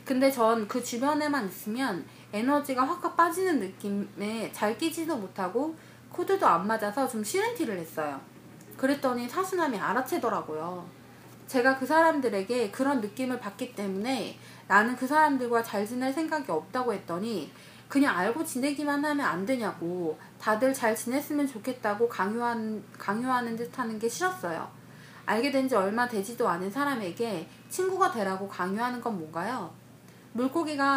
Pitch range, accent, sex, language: 205-275 Hz, native, female, Korean